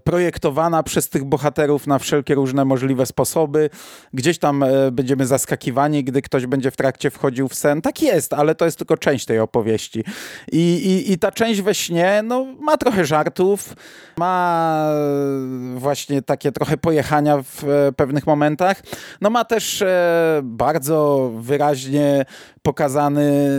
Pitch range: 135-170 Hz